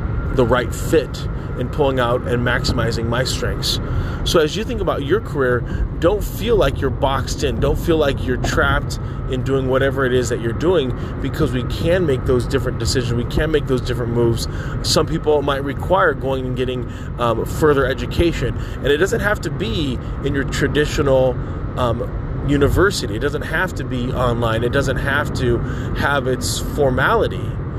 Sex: male